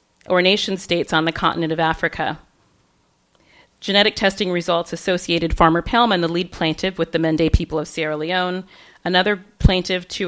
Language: English